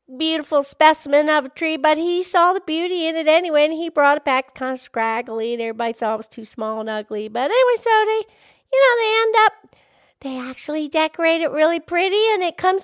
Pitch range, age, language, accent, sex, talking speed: 265-360 Hz, 50-69, English, American, female, 225 wpm